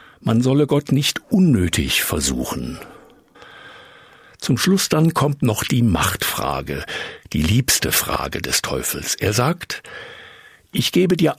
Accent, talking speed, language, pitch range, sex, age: German, 120 wpm, German, 90-150 Hz, male, 60-79